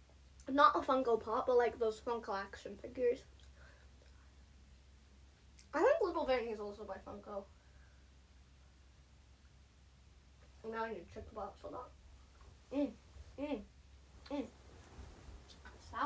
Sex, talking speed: female, 110 wpm